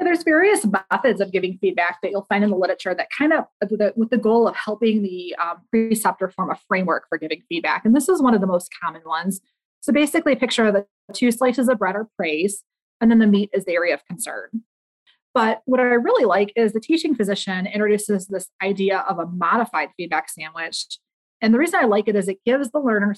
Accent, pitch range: American, 185-240 Hz